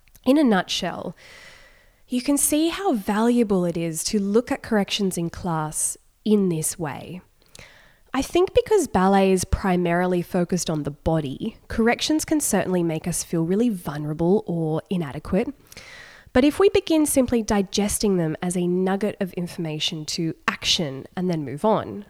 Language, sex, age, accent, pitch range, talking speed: English, female, 20-39, Australian, 165-225 Hz, 155 wpm